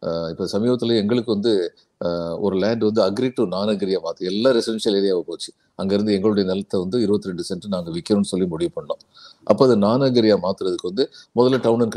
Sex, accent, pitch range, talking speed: male, native, 100-135 Hz, 175 wpm